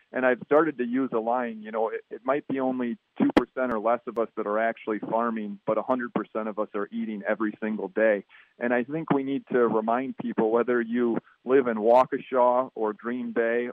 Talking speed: 210 wpm